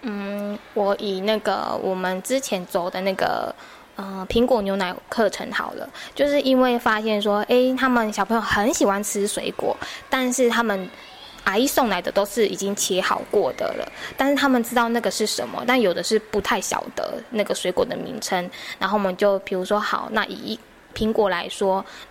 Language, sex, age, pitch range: Chinese, female, 10-29, 200-240 Hz